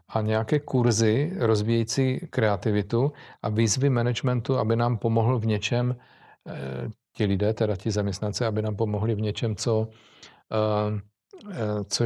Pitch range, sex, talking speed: 105-125 Hz, male, 125 wpm